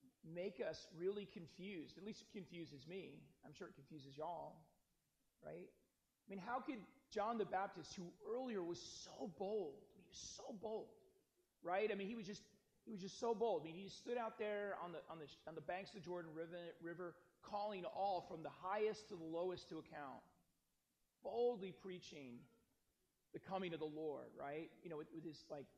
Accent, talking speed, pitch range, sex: American, 200 wpm, 155-195 Hz, male